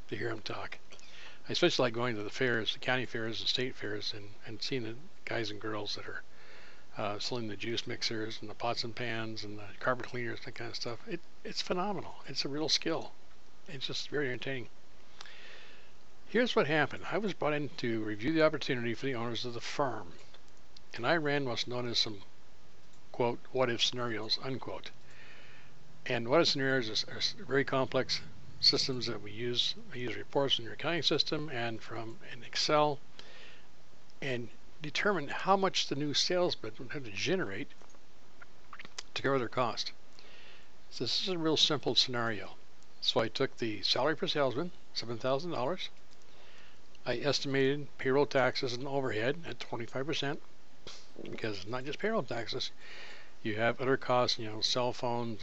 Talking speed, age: 170 wpm, 60-79